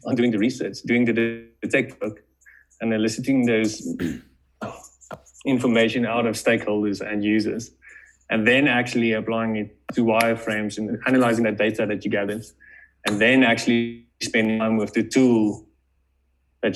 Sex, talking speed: male, 145 wpm